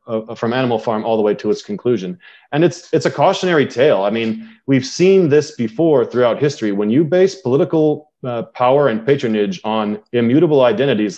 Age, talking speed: 30-49, 190 wpm